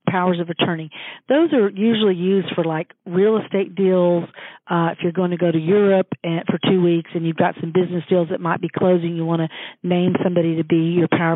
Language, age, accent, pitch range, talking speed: English, 40-59, American, 165-195 Hz, 220 wpm